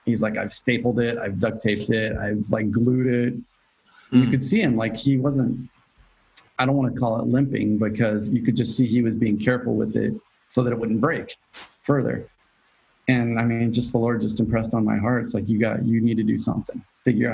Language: English